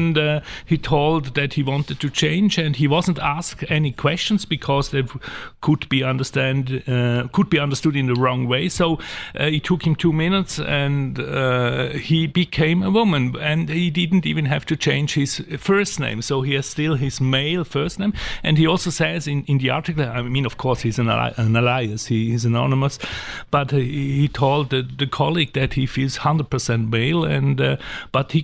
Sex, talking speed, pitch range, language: male, 195 wpm, 135-165 Hz, English